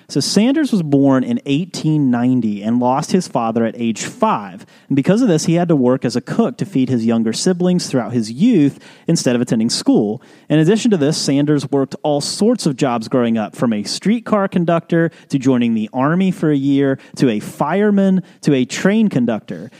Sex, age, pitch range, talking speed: male, 30-49, 130-200 Hz, 200 wpm